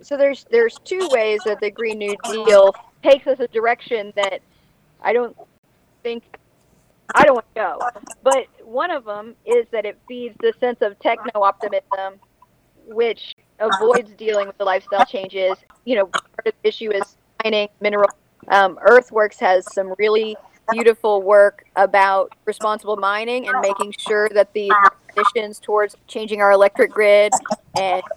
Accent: American